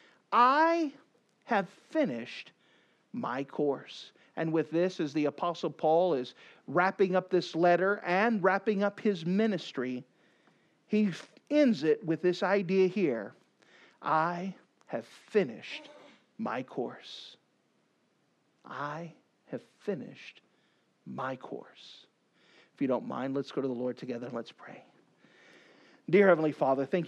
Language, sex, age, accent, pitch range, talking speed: English, male, 50-69, American, 155-215 Hz, 125 wpm